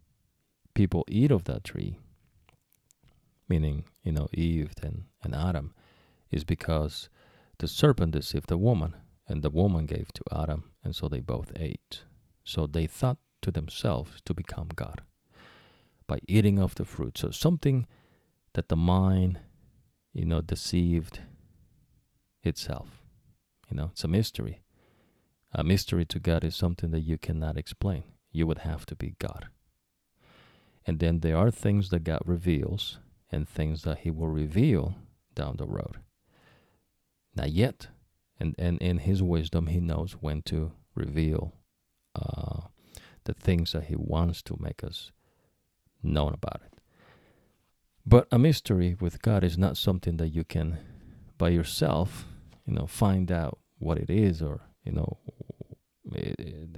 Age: 40-59